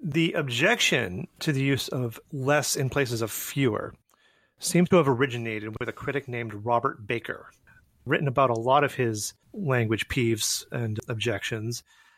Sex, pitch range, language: male, 120-150 Hz, English